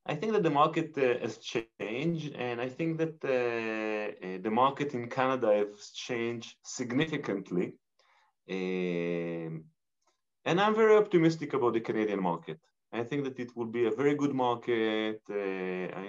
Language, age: English, 30-49